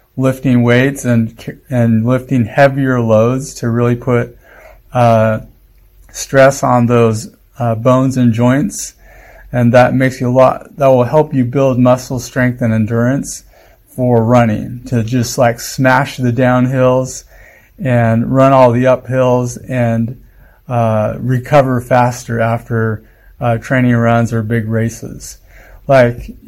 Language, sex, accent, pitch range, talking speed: English, male, American, 115-130 Hz, 130 wpm